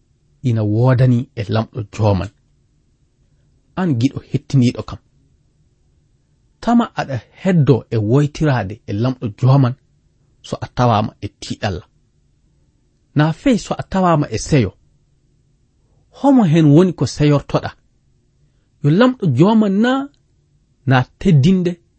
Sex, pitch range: male, 115-155 Hz